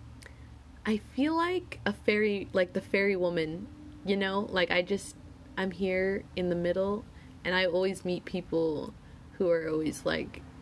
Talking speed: 160 wpm